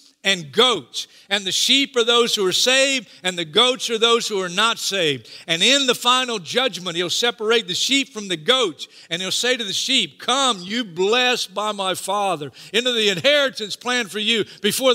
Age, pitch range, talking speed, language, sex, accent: 50-69, 140-210 Hz, 200 wpm, English, male, American